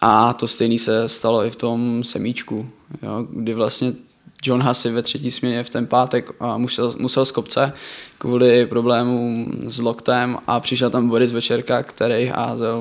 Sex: male